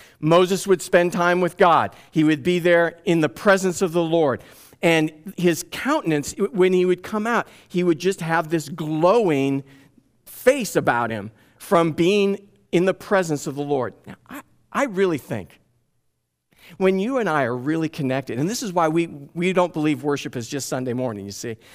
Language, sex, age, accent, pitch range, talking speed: English, male, 50-69, American, 140-190 Hz, 190 wpm